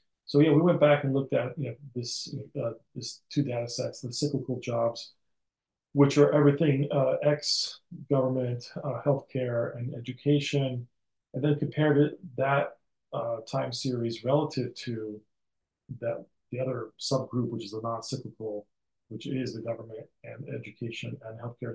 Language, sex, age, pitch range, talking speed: English, male, 40-59, 120-145 Hz, 150 wpm